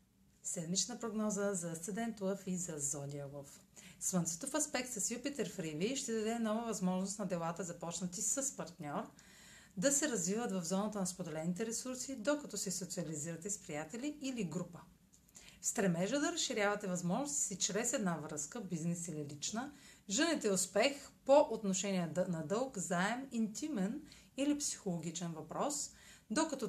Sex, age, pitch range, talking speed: female, 30-49, 175-240 Hz, 135 wpm